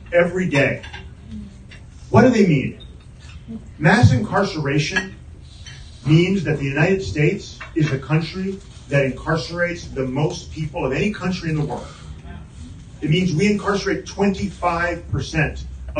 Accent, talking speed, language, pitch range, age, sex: American, 120 wpm, English, 130-175 Hz, 40-59, male